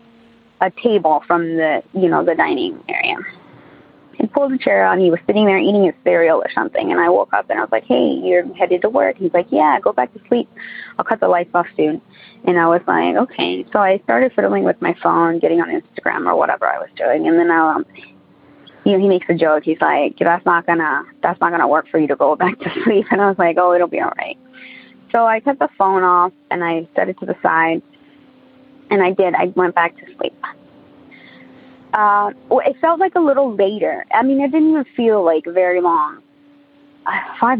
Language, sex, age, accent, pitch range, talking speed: English, female, 20-39, American, 175-265 Hz, 225 wpm